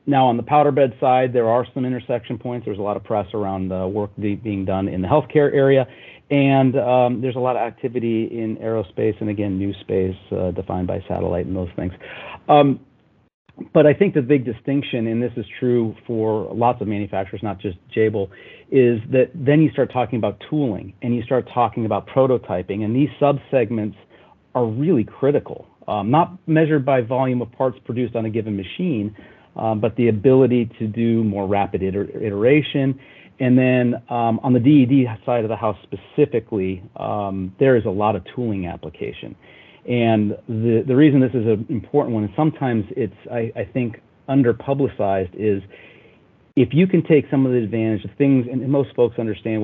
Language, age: English, 40-59